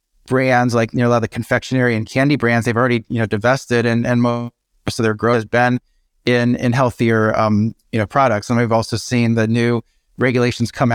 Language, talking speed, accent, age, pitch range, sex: English, 220 wpm, American, 30-49, 115-125 Hz, male